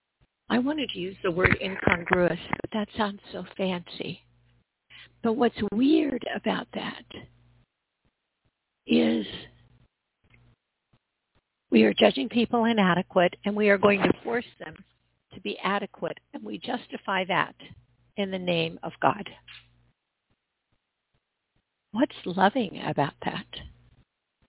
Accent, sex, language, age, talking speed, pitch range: American, female, English, 60-79, 115 wpm, 165-225 Hz